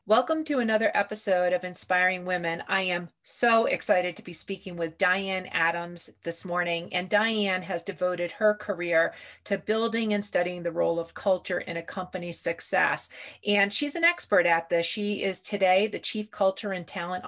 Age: 40-59